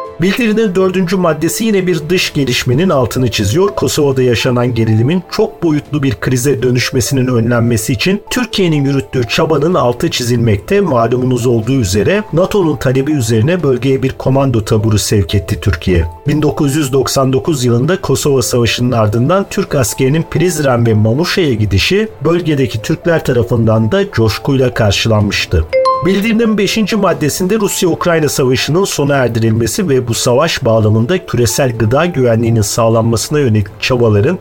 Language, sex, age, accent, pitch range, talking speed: Turkish, male, 50-69, native, 115-175 Hz, 125 wpm